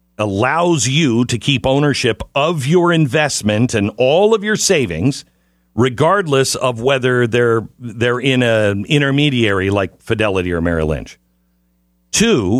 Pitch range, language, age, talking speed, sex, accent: 105-160 Hz, English, 50-69, 130 wpm, male, American